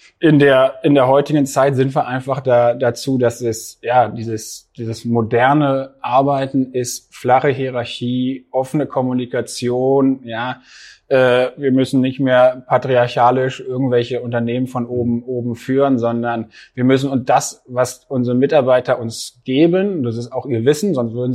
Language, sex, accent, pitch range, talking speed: German, male, German, 125-135 Hz, 145 wpm